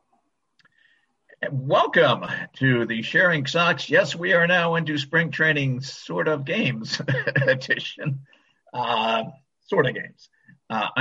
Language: English